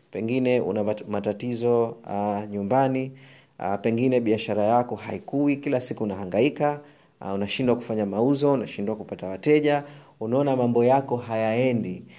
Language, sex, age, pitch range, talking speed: Swahili, male, 30-49, 110-130 Hz, 120 wpm